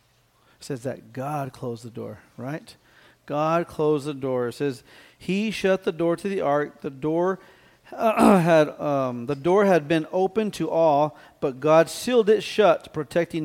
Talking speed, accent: 170 wpm, American